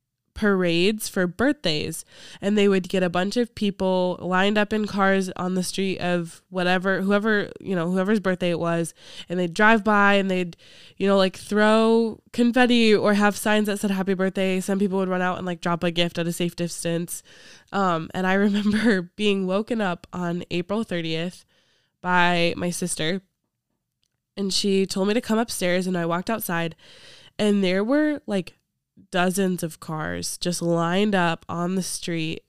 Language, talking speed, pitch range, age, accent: English, 175 wpm, 175-205 Hz, 20-39, American